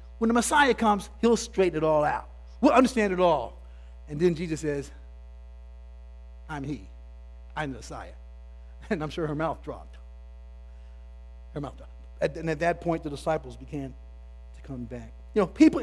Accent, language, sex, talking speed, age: American, English, male, 165 wpm, 50-69